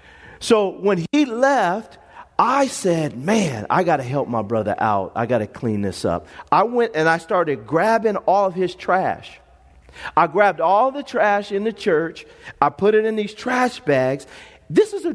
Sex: male